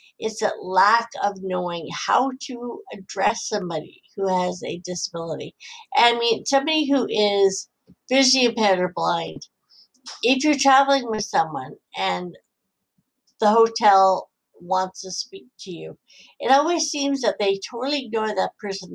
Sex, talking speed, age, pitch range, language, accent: female, 140 wpm, 60-79, 195-255 Hz, English, American